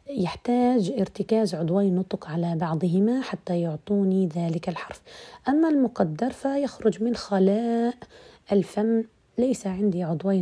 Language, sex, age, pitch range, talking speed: Arabic, female, 40-59, 180-225 Hz, 110 wpm